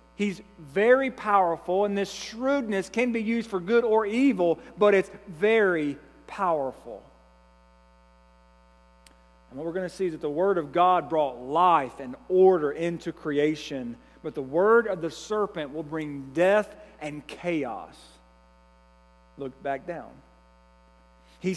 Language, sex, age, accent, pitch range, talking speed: English, male, 40-59, American, 135-220 Hz, 140 wpm